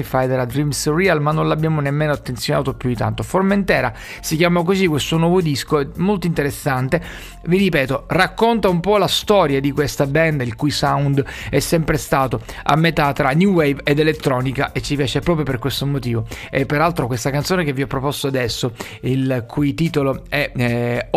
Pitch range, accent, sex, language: 135-175 Hz, native, male, Italian